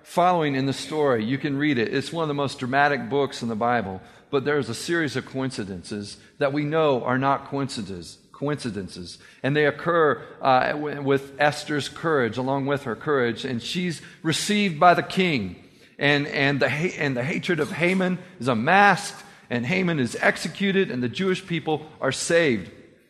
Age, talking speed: 40-59, 180 wpm